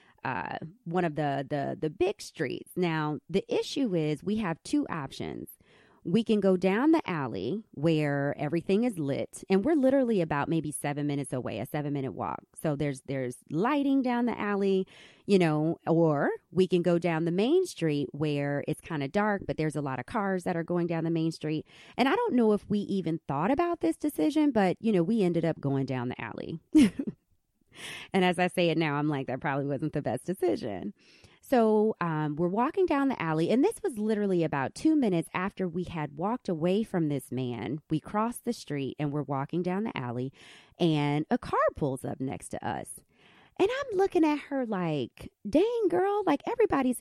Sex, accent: female, American